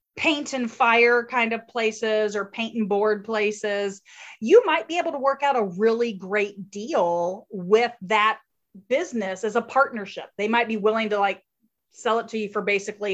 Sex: female